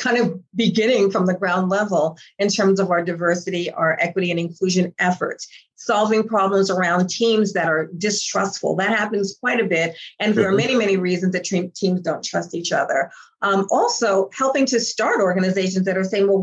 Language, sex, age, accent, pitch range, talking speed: English, female, 50-69, American, 185-230 Hz, 185 wpm